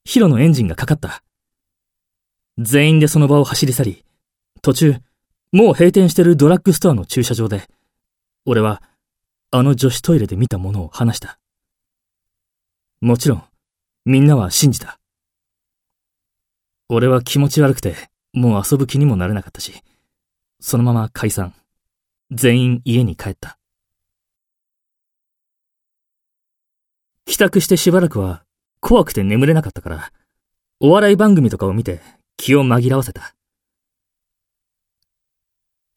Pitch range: 85-135 Hz